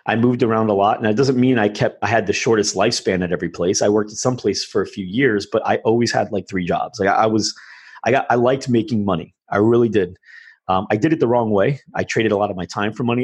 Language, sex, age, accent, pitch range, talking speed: English, male, 30-49, American, 95-110 Hz, 290 wpm